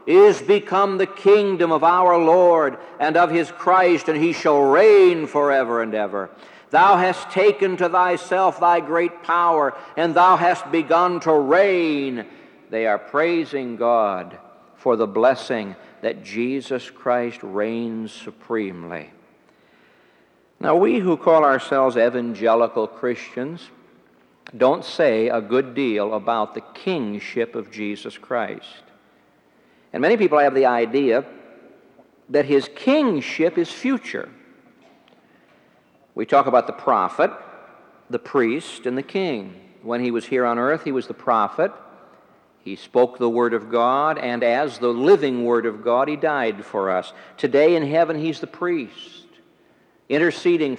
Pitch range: 120-175 Hz